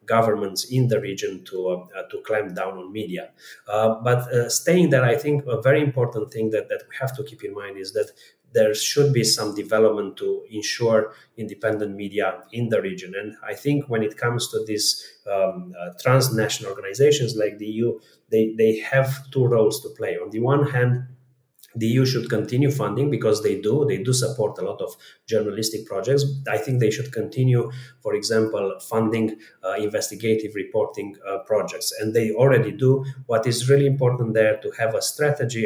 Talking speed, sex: 190 wpm, male